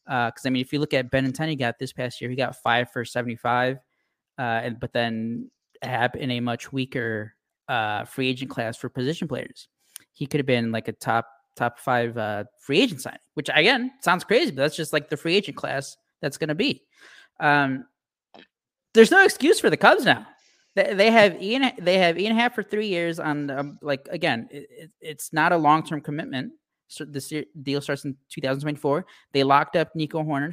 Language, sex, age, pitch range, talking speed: English, male, 20-39, 125-165 Hz, 205 wpm